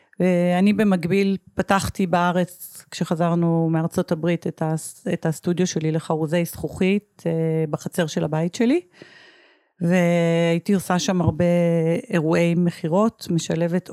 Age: 40-59